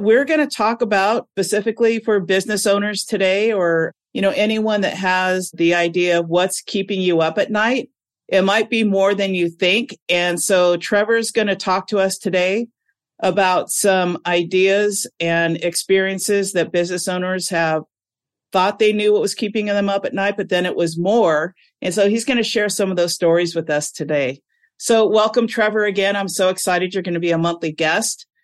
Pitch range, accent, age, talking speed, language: 170-205 Hz, American, 50-69, 195 wpm, English